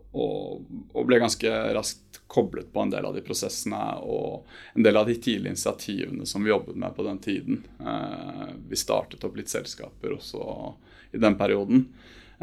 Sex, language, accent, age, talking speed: male, English, Norwegian, 20-39, 160 wpm